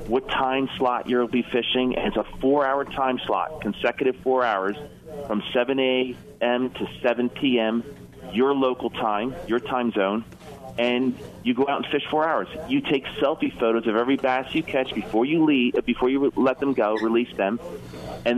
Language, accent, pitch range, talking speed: English, American, 105-130 Hz, 185 wpm